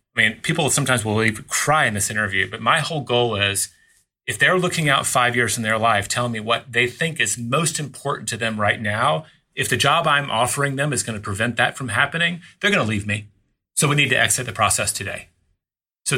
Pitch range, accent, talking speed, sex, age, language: 115-150 Hz, American, 235 wpm, male, 30-49, English